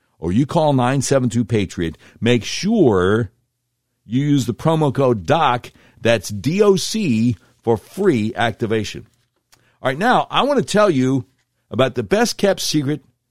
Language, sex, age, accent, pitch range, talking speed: English, male, 60-79, American, 120-150 Hz, 130 wpm